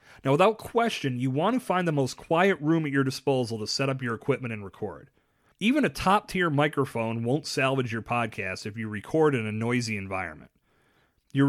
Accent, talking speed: American, 195 wpm